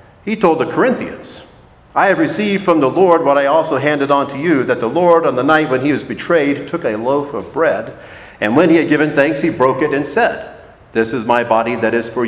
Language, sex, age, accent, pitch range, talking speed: English, male, 50-69, American, 110-150 Hz, 245 wpm